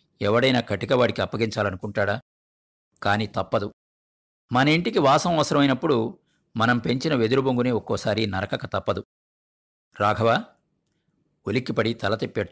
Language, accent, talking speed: Telugu, native, 90 wpm